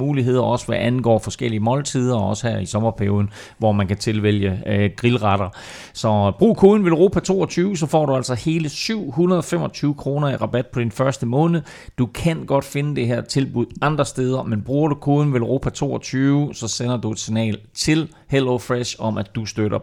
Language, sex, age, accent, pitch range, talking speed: Danish, male, 30-49, native, 110-145 Hz, 190 wpm